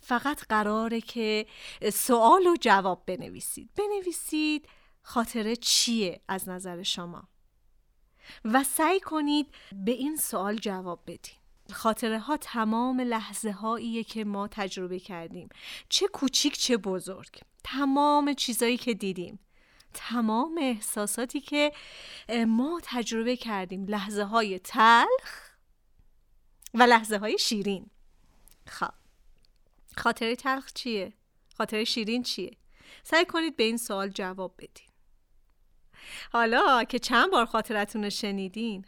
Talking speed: 110 wpm